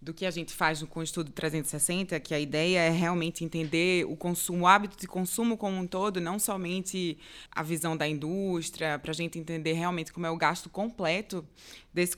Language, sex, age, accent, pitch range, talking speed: Portuguese, female, 20-39, Brazilian, 175-225 Hz, 200 wpm